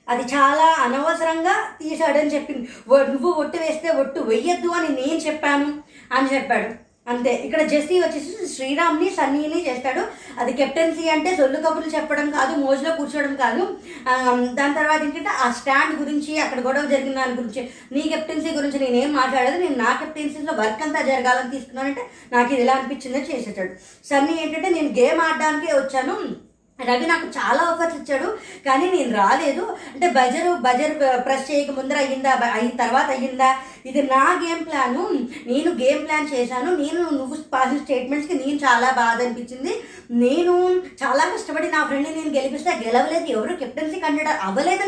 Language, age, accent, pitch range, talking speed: Telugu, 20-39, native, 260-330 Hz, 150 wpm